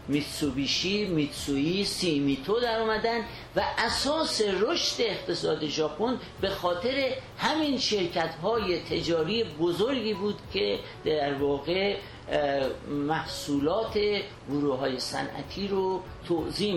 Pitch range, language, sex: 145-210 Hz, Persian, male